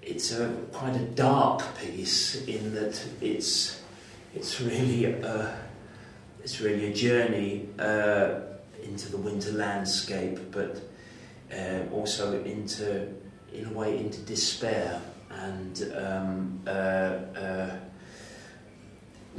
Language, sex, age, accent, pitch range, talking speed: English, male, 40-59, British, 100-110 Hz, 110 wpm